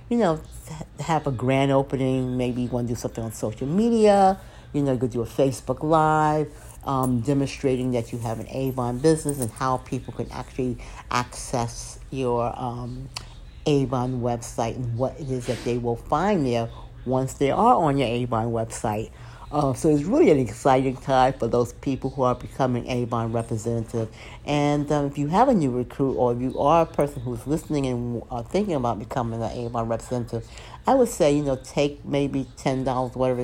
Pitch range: 120-145 Hz